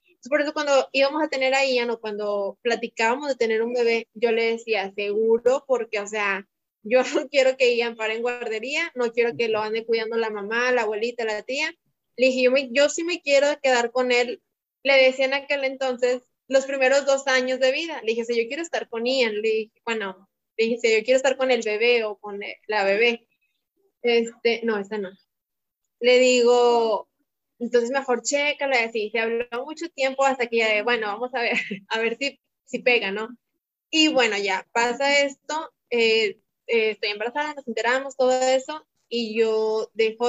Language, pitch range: Spanish, 220-265 Hz